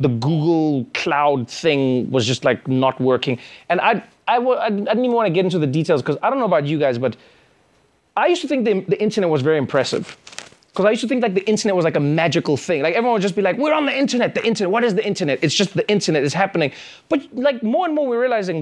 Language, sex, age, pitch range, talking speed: English, male, 20-39, 155-235 Hz, 260 wpm